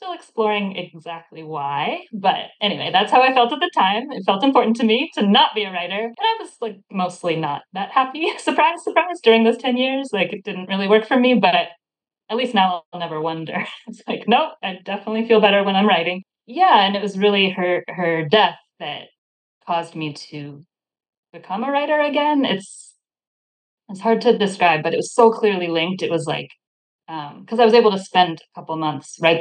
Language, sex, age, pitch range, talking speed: English, female, 20-39, 165-225 Hz, 210 wpm